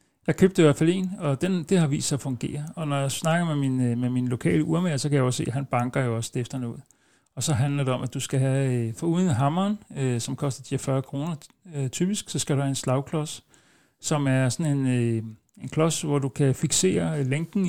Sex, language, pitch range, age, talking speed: male, Danish, 125-150 Hz, 60-79, 240 wpm